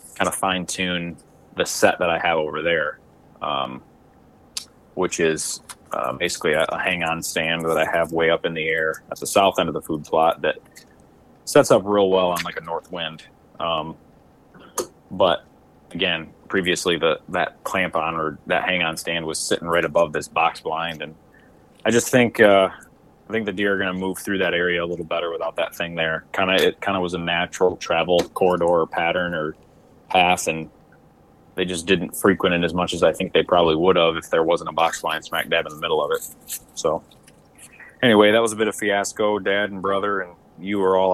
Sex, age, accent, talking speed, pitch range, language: male, 30-49, American, 215 wpm, 85-95 Hz, English